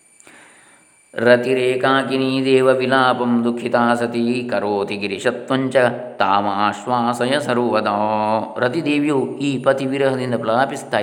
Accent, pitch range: native, 110-150 Hz